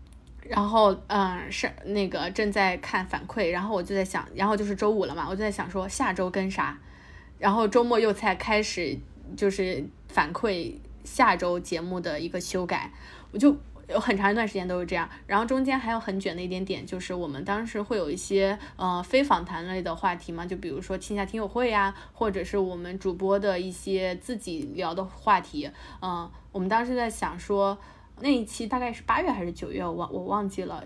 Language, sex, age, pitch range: Chinese, female, 20-39, 180-215 Hz